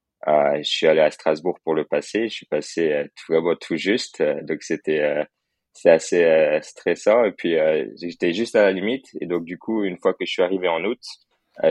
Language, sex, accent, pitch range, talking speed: French, male, French, 80-105 Hz, 230 wpm